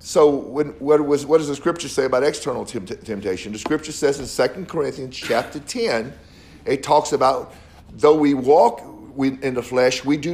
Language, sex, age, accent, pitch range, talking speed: English, male, 50-69, American, 135-180 Hz, 170 wpm